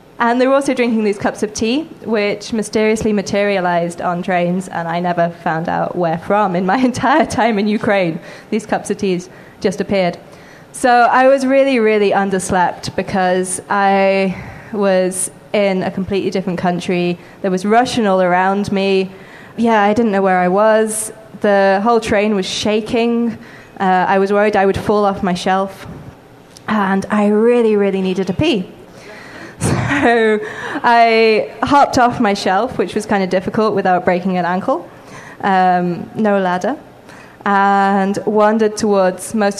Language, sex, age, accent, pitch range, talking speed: English, female, 20-39, British, 180-215 Hz, 160 wpm